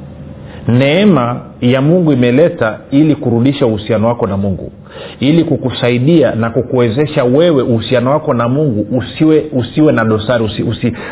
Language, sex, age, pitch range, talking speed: Swahili, male, 40-59, 115-150 Hz, 135 wpm